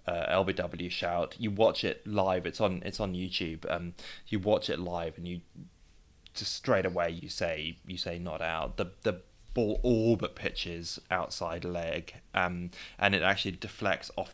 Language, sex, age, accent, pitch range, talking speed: English, male, 20-39, British, 85-105 Hz, 175 wpm